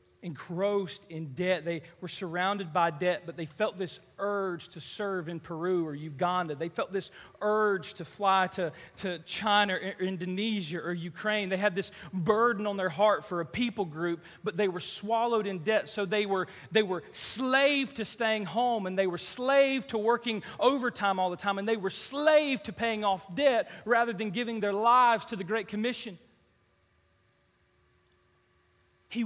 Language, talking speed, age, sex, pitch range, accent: English, 175 wpm, 40-59, male, 195-270 Hz, American